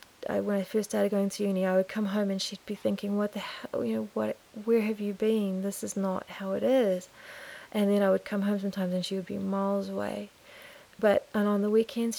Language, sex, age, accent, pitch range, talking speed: English, female, 30-49, Australian, 185-220 Hz, 240 wpm